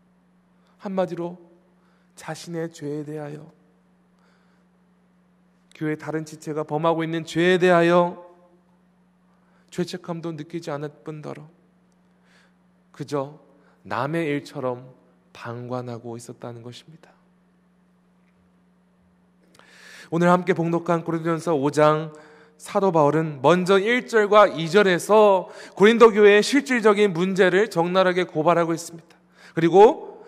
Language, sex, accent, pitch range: Korean, male, native, 155-190 Hz